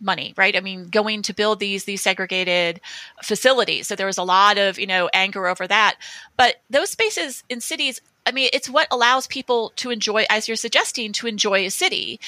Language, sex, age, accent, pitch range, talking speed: English, female, 30-49, American, 195-245 Hz, 205 wpm